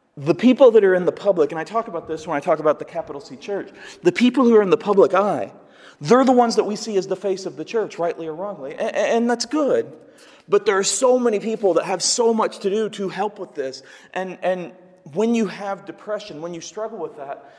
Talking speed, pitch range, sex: 255 wpm, 150-200 Hz, male